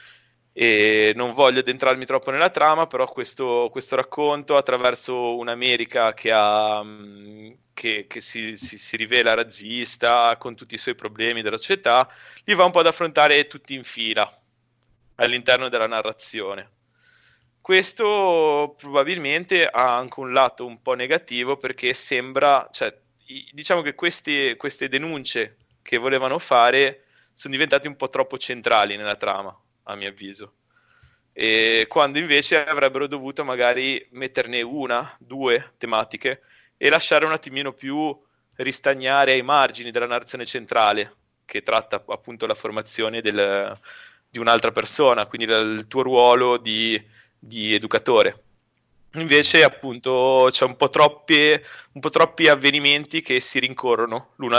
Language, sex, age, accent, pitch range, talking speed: Italian, male, 20-39, native, 115-145 Hz, 130 wpm